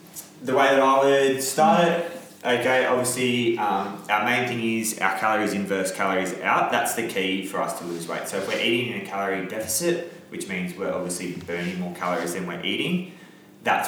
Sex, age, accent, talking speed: male, 20-39, Australian, 200 wpm